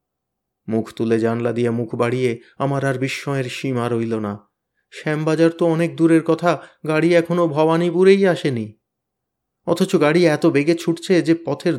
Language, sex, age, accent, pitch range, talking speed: Bengali, male, 30-49, native, 120-155 Hz, 145 wpm